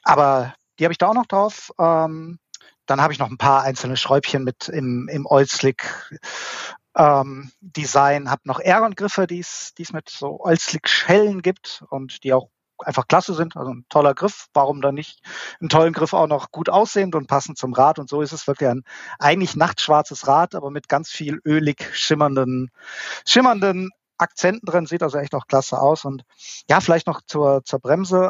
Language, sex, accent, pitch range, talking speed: German, male, German, 135-165 Hz, 185 wpm